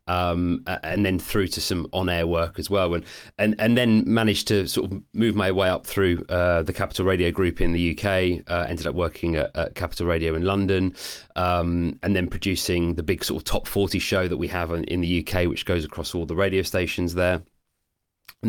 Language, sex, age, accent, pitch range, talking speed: English, male, 30-49, British, 85-95 Hz, 225 wpm